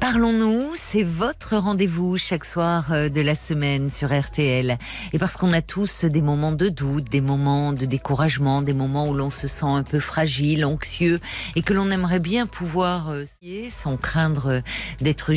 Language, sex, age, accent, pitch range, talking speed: French, female, 50-69, French, 150-200 Hz, 170 wpm